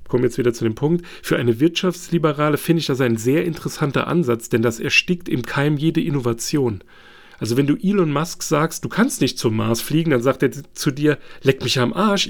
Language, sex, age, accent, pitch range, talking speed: German, male, 40-59, German, 125-175 Hz, 215 wpm